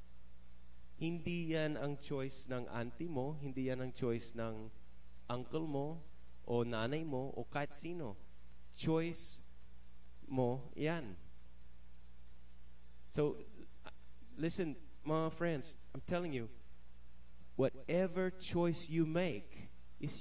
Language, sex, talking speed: English, male, 105 wpm